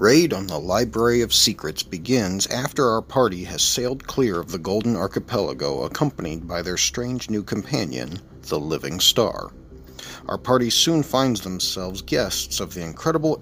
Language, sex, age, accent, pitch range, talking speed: English, male, 50-69, American, 85-125 Hz, 155 wpm